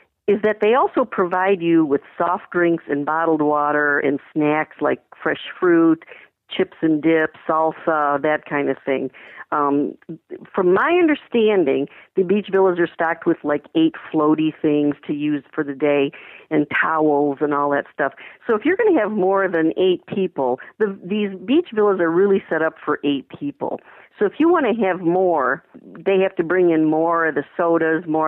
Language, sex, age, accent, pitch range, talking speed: English, female, 50-69, American, 145-185 Hz, 185 wpm